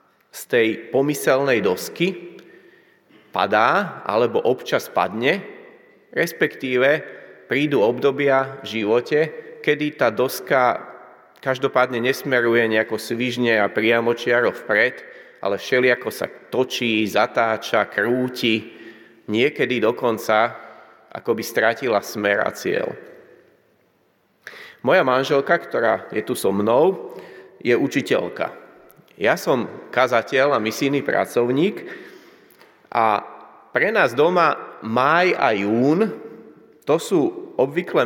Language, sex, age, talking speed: Slovak, male, 30-49, 95 wpm